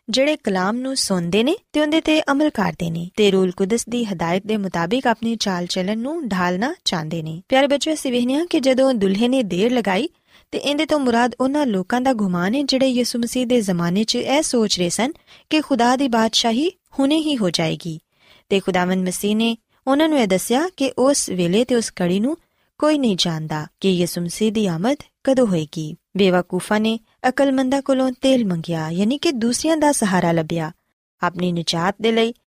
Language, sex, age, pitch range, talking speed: Punjabi, female, 20-39, 185-265 Hz, 110 wpm